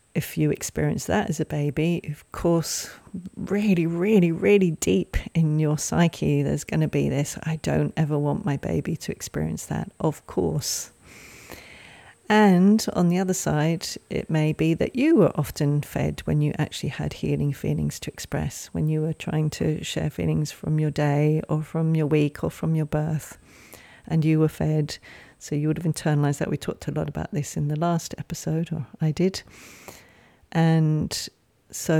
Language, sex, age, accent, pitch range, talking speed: English, female, 40-59, British, 145-165 Hz, 180 wpm